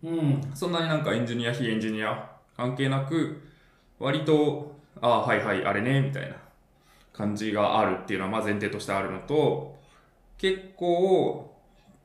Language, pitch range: Japanese, 110-145 Hz